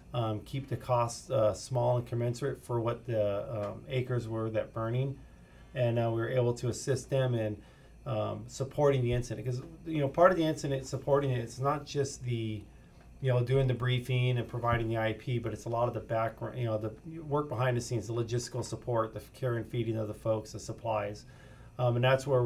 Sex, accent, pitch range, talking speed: male, American, 110-130 Hz, 215 wpm